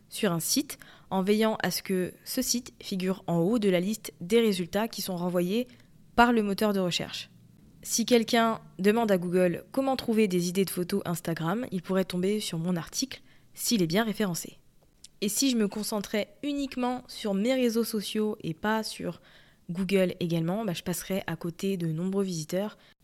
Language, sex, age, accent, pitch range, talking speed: French, female, 20-39, French, 175-215 Hz, 185 wpm